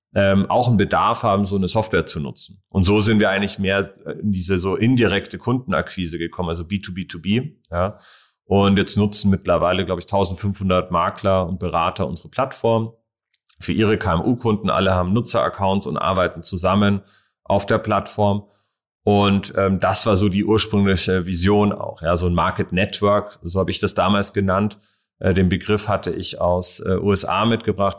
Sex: male